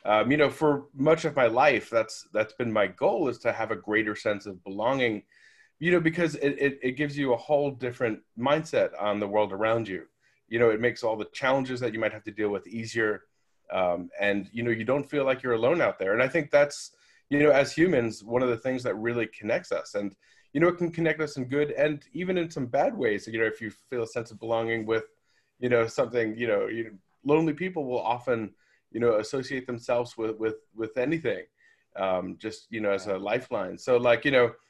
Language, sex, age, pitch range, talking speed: English, male, 30-49, 105-140 Hz, 230 wpm